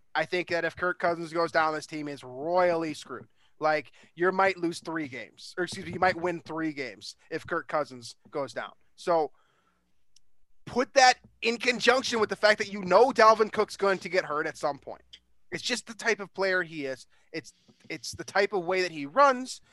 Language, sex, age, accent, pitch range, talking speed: English, male, 20-39, American, 165-215 Hz, 210 wpm